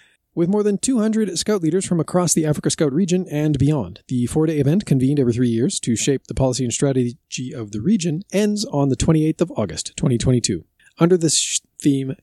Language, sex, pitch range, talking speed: English, male, 125-165 Hz, 195 wpm